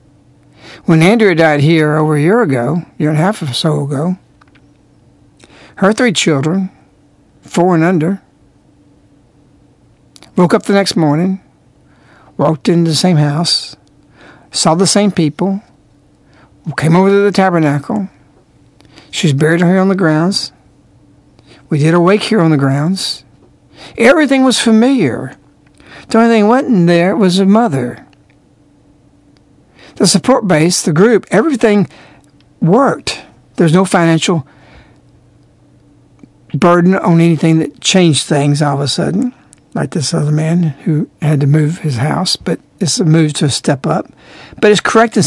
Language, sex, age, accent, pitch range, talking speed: English, male, 60-79, American, 150-195 Hz, 145 wpm